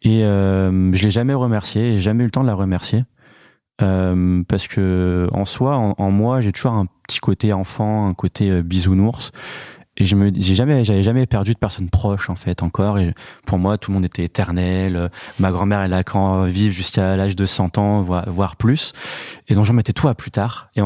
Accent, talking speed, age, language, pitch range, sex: French, 220 wpm, 20-39, French, 95-115 Hz, male